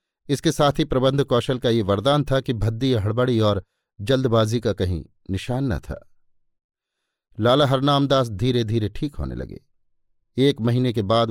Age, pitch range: 50-69, 105-130 Hz